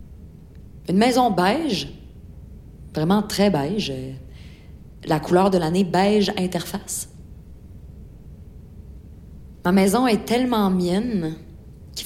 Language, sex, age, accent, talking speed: French, female, 30-49, Canadian, 90 wpm